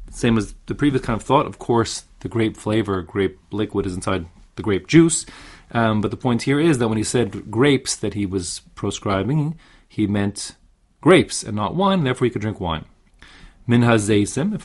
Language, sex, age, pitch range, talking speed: English, male, 30-49, 105-140 Hz, 195 wpm